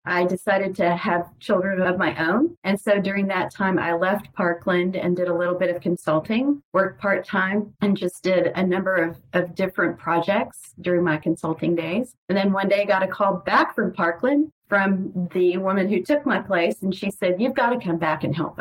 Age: 40-59